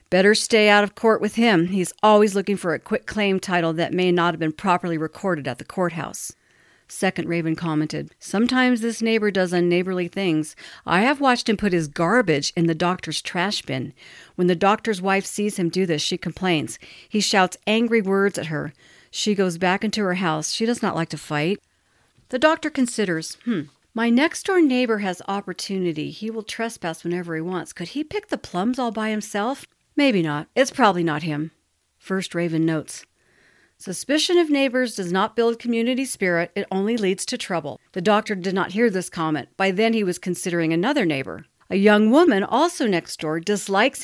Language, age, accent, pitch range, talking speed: English, 50-69, American, 175-225 Hz, 190 wpm